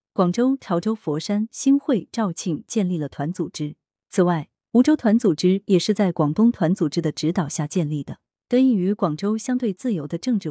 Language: Chinese